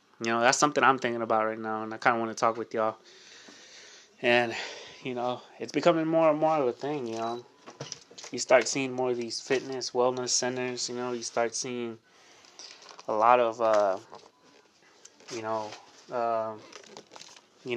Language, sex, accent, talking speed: English, male, American, 170 wpm